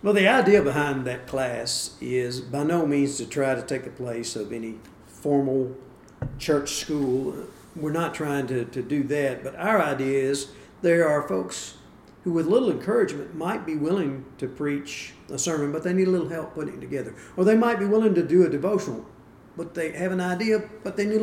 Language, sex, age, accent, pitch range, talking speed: English, male, 50-69, American, 135-175 Hz, 205 wpm